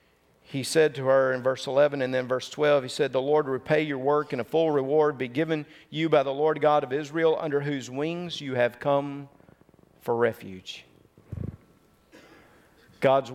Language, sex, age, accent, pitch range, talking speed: English, male, 50-69, American, 135-175 Hz, 180 wpm